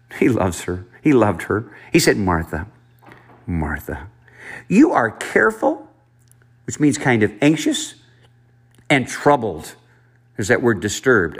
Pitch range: 100-130 Hz